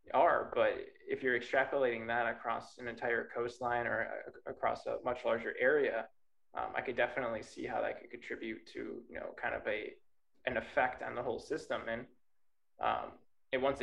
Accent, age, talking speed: American, 20-39, 180 wpm